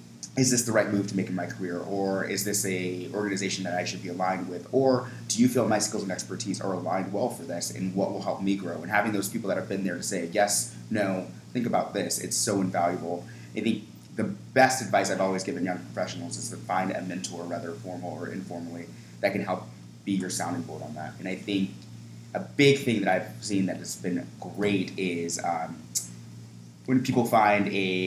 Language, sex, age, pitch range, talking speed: English, male, 30-49, 85-100 Hz, 225 wpm